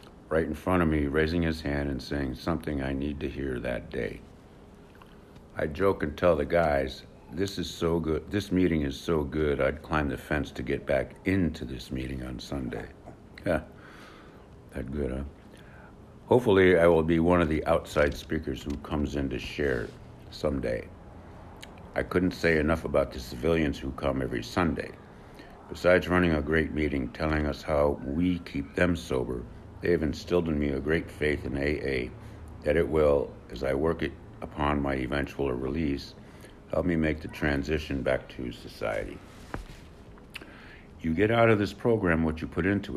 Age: 60-79